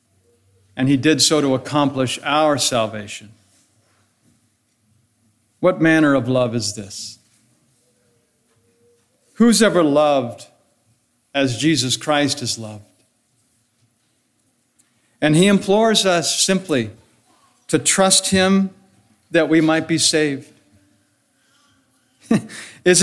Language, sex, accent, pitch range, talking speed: English, male, American, 120-165 Hz, 95 wpm